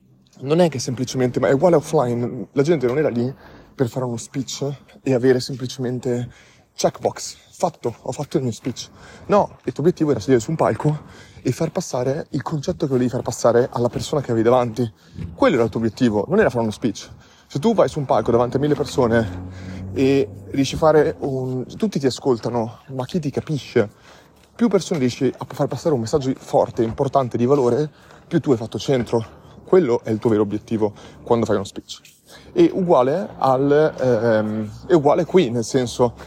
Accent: native